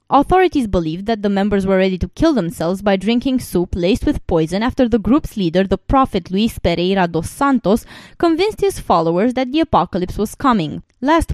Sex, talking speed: female, 185 wpm